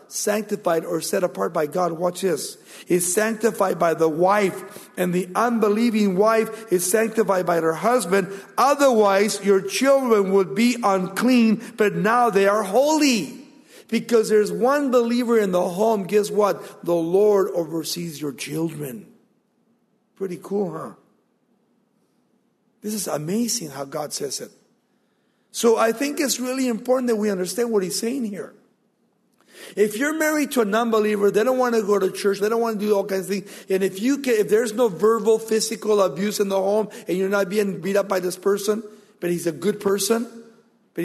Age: 50-69